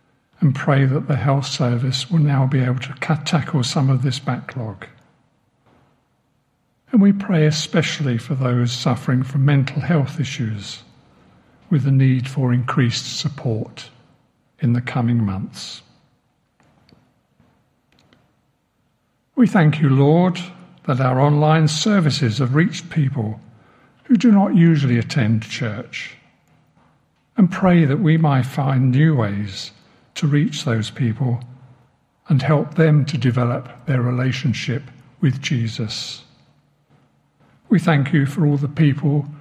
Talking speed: 125 wpm